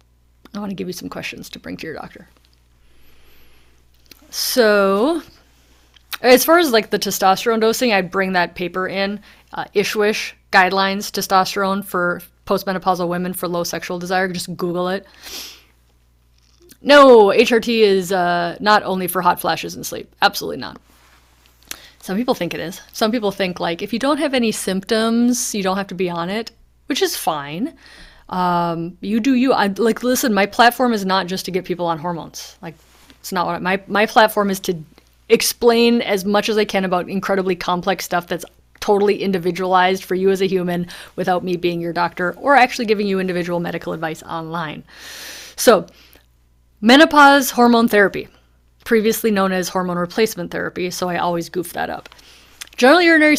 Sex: female